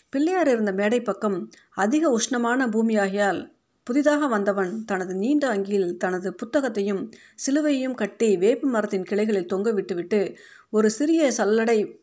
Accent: native